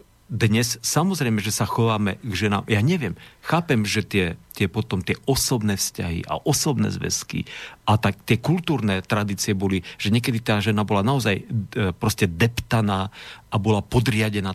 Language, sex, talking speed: Slovak, male, 155 wpm